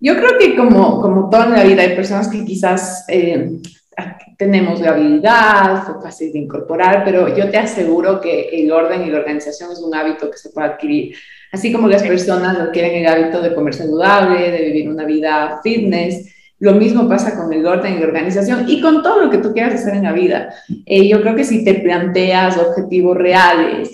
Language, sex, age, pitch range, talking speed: Spanish, female, 30-49, 175-215 Hz, 210 wpm